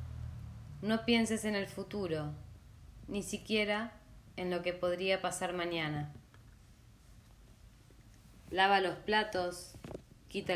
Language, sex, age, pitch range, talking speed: Spanish, female, 20-39, 115-190 Hz, 95 wpm